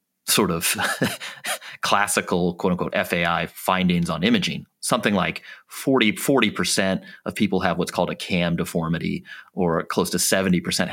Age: 30-49